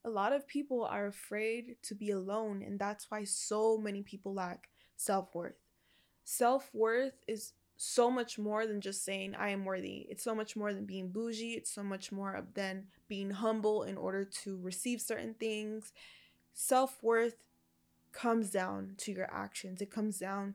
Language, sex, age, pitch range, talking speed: English, female, 20-39, 195-225 Hz, 165 wpm